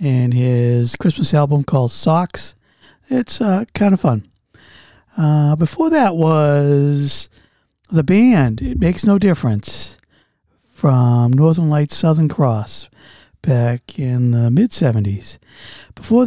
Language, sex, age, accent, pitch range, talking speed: English, male, 50-69, American, 130-195 Hz, 115 wpm